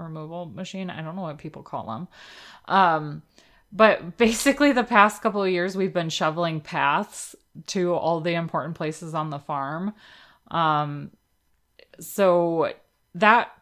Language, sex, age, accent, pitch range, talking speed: English, female, 20-39, American, 160-190 Hz, 140 wpm